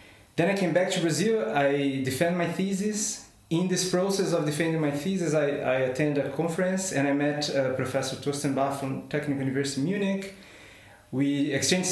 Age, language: 20-39, German